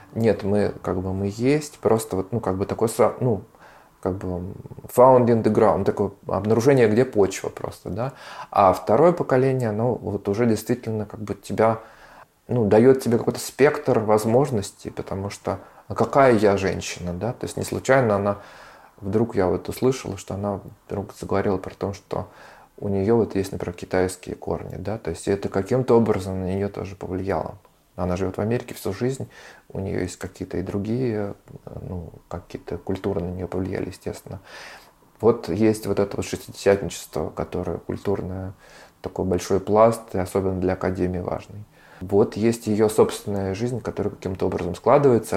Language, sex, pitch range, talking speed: Russian, male, 95-115 Hz, 165 wpm